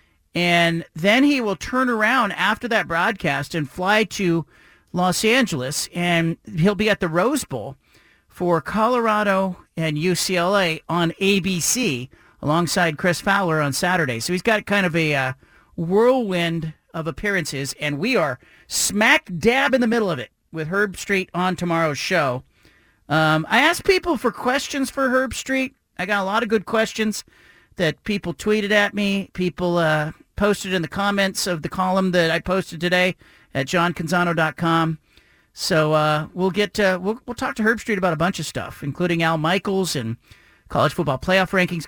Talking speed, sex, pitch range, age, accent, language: 170 wpm, male, 160-205 Hz, 40-59, American, English